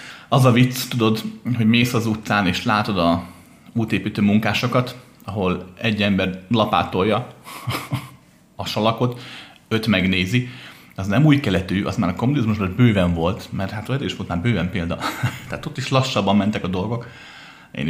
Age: 30-49